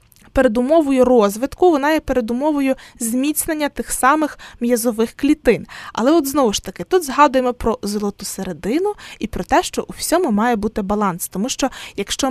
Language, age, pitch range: Ukrainian, 20-39, 210-270 Hz